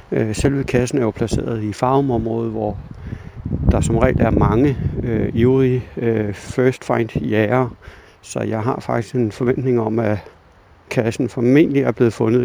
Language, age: Danish, 60-79